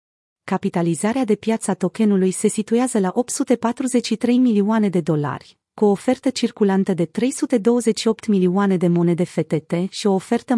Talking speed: 135 wpm